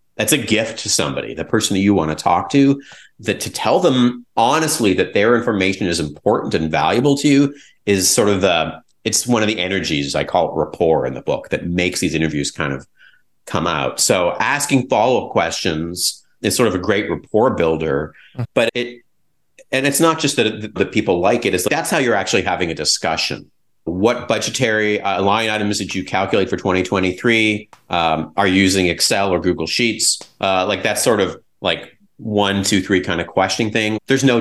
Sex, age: male, 40-59